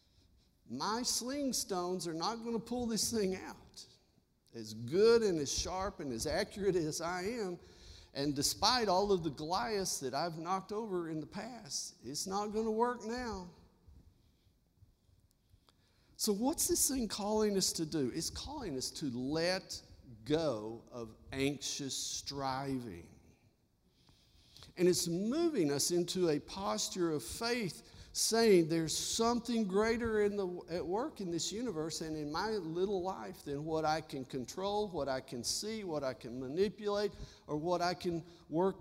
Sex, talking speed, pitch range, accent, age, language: male, 155 wpm, 140-210 Hz, American, 50-69, English